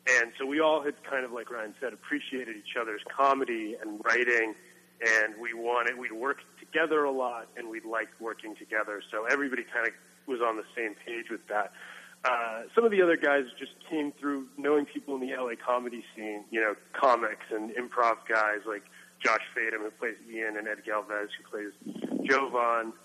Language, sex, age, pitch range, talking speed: English, male, 30-49, 115-150 Hz, 195 wpm